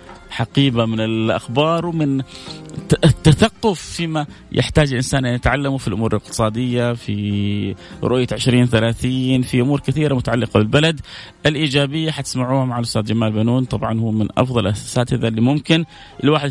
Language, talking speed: Arabic, 135 wpm